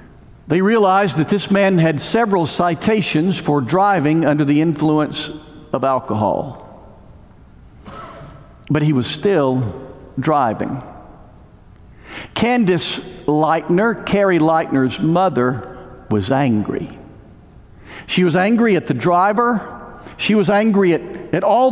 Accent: American